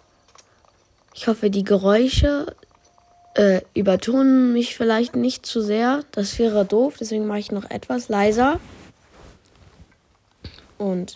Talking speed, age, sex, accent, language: 115 wpm, 20-39, female, German, German